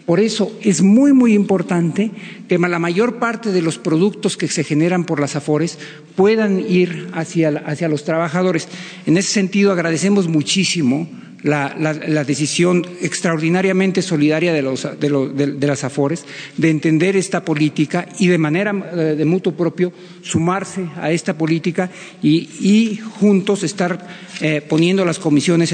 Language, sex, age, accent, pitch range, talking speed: Spanish, male, 50-69, Mexican, 150-185 Hz, 145 wpm